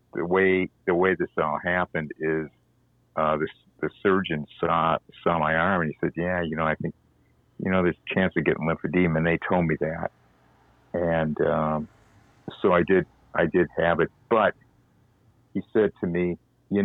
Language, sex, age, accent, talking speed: English, male, 50-69, American, 185 wpm